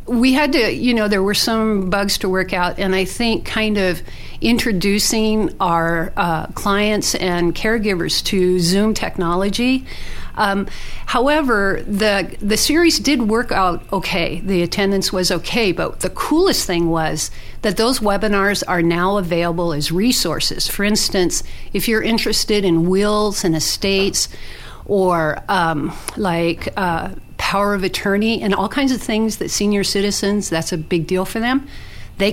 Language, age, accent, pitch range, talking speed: English, 50-69, American, 175-215 Hz, 155 wpm